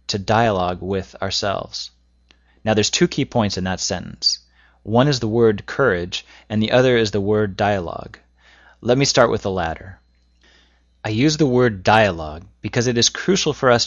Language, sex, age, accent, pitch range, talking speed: English, male, 30-49, American, 95-120 Hz, 175 wpm